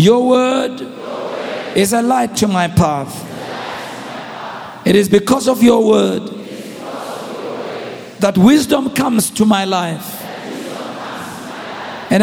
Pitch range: 215-275 Hz